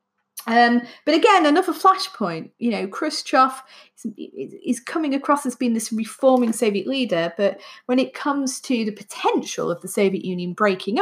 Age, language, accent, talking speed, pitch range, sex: 30-49, English, British, 165 wpm, 195-260 Hz, female